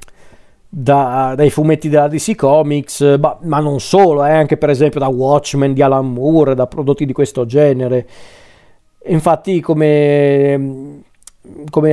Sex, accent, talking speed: male, native, 135 wpm